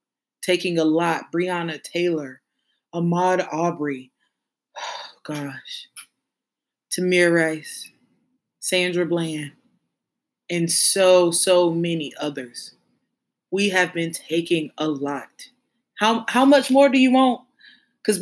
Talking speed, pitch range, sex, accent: 100 wpm, 170-215 Hz, female, American